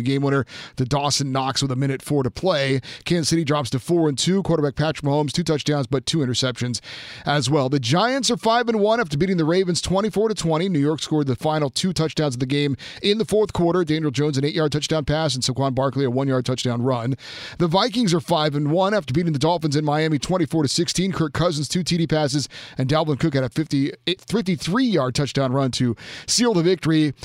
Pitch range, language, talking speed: 140-175 Hz, English, 220 wpm